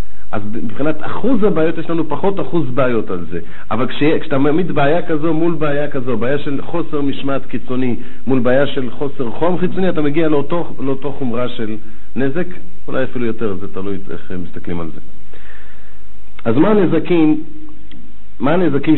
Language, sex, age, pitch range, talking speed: Hebrew, male, 50-69, 110-155 Hz, 165 wpm